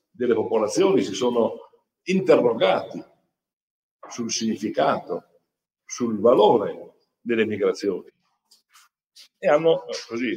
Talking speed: 80 wpm